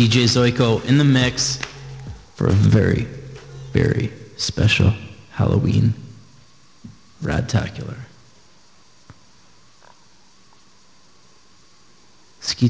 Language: English